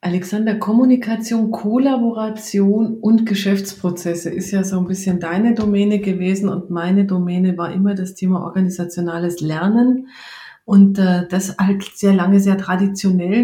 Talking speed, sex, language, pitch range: 130 wpm, female, German, 185-210 Hz